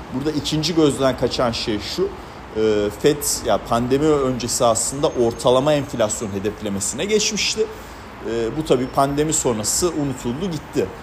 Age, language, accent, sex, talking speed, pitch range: 40-59, Turkish, native, male, 115 wpm, 115-150 Hz